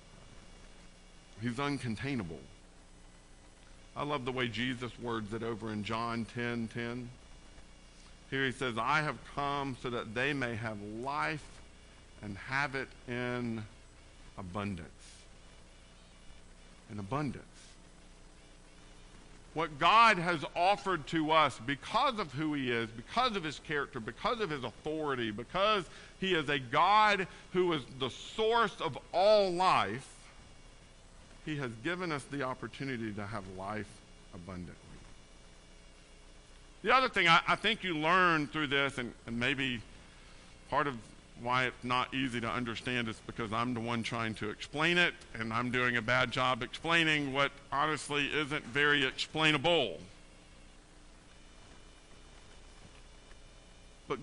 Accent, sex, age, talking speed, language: American, male, 50-69, 130 wpm, English